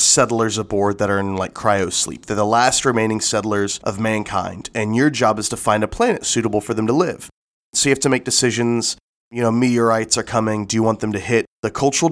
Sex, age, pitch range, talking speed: male, 20-39, 105-120 Hz, 235 wpm